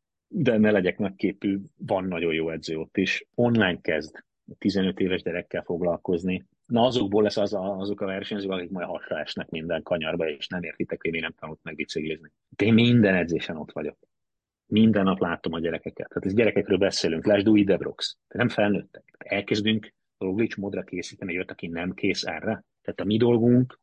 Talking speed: 175 wpm